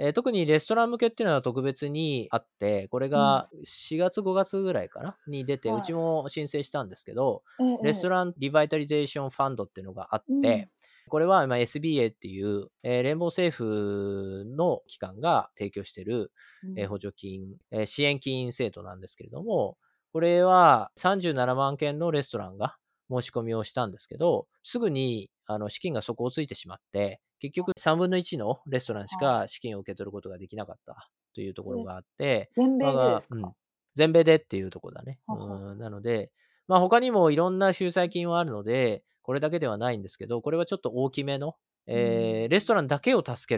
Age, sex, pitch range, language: 20-39, male, 110-175 Hz, Japanese